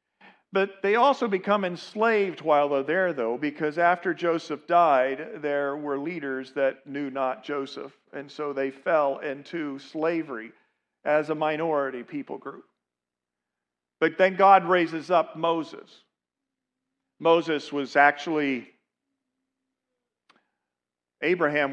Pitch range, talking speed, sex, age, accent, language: 120-155 Hz, 115 wpm, male, 50-69, American, English